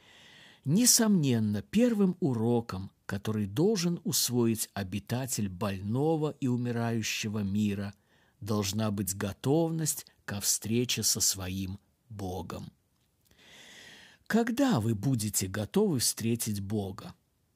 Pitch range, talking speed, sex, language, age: 105-160 Hz, 85 wpm, male, Russian, 50-69